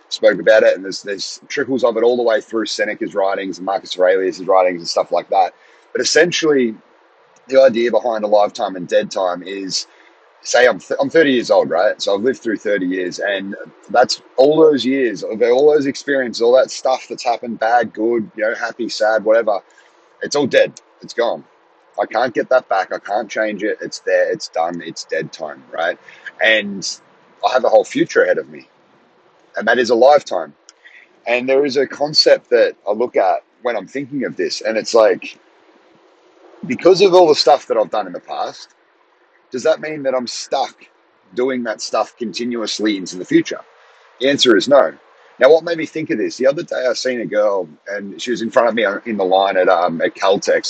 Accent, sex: Australian, male